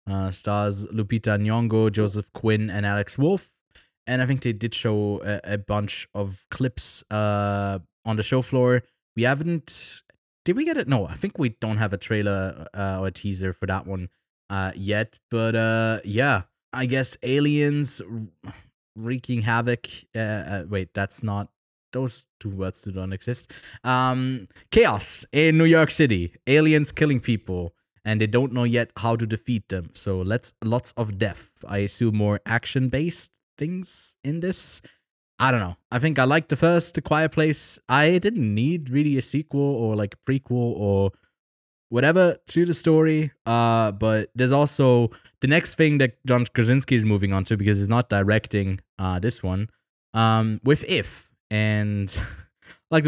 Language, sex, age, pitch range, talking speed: English, male, 20-39, 105-135 Hz, 170 wpm